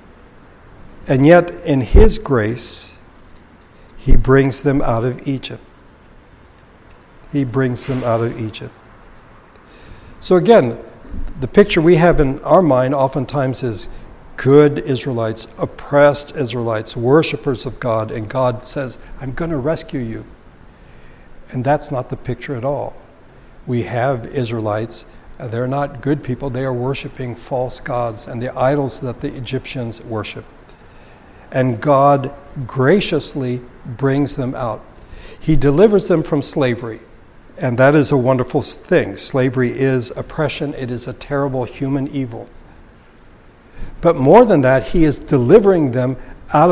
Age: 60-79